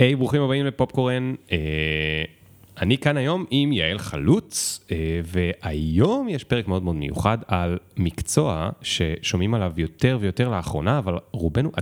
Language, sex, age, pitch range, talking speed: Hebrew, male, 30-49, 85-115 Hz, 140 wpm